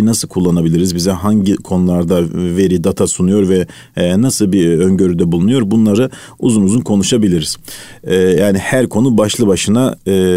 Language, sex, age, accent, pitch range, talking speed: Turkish, male, 40-59, native, 95-125 Hz, 145 wpm